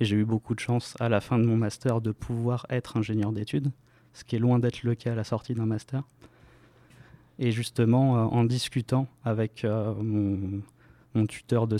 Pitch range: 110-125 Hz